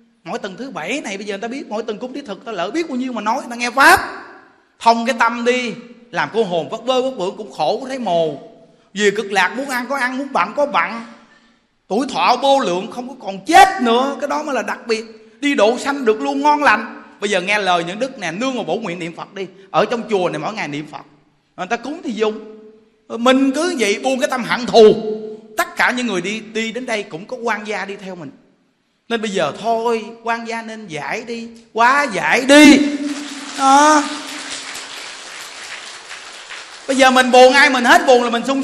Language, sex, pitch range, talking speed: Vietnamese, male, 210-260 Hz, 230 wpm